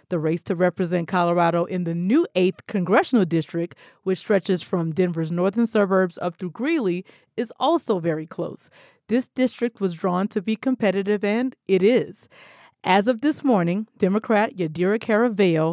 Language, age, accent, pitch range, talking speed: English, 40-59, American, 175-215 Hz, 155 wpm